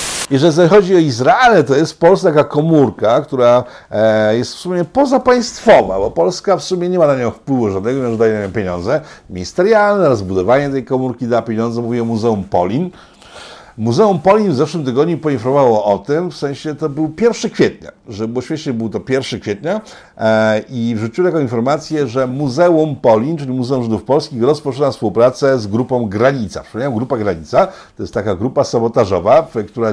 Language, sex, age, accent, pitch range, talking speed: Polish, male, 50-69, native, 115-160 Hz, 170 wpm